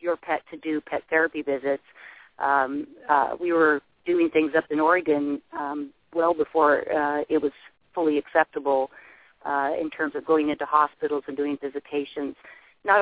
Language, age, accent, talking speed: English, 40-59, American, 160 wpm